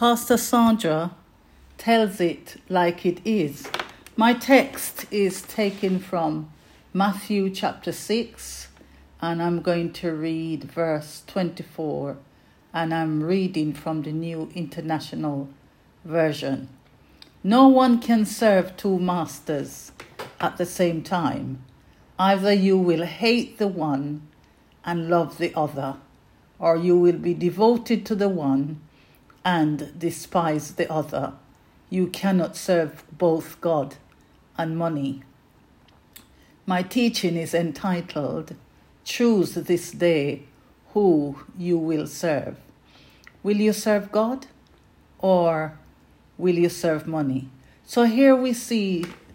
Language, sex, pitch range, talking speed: English, female, 155-195 Hz, 115 wpm